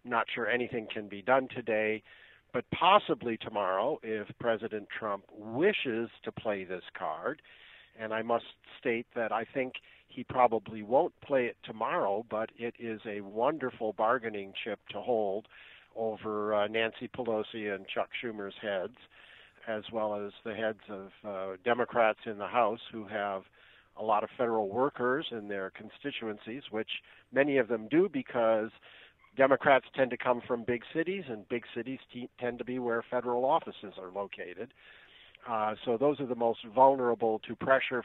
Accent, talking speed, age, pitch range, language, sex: American, 160 wpm, 50-69, 110-125 Hz, English, male